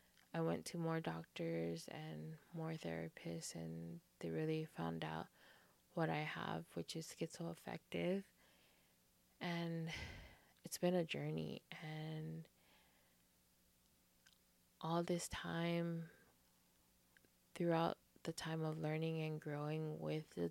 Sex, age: female, 20-39